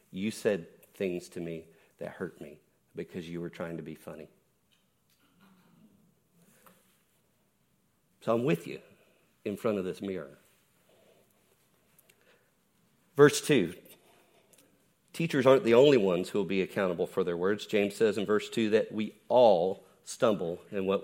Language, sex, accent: English, male, American